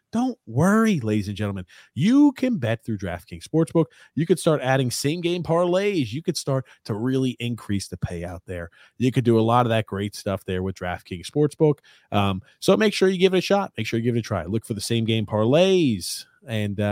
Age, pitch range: 30-49, 110-165 Hz